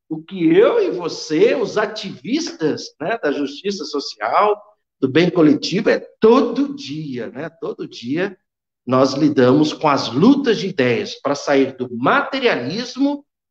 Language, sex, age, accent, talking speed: Portuguese, male, 60-79, Brazilian, 140 wpm